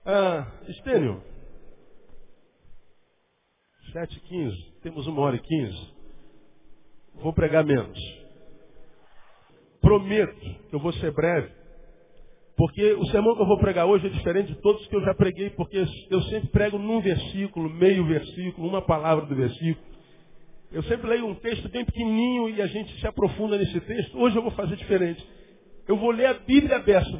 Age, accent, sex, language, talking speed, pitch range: 50-69, Brazilian, male, Portuguese, 160 wpm, 155-205 Hz